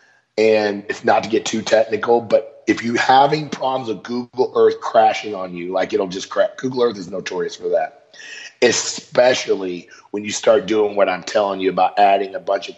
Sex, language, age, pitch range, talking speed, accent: male, English, 30-49, 100-150 Hz, 195 wpm, American